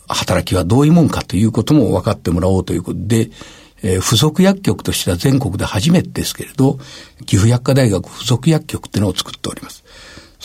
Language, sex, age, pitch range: Japanese, male, 60-79, 100-135 Hz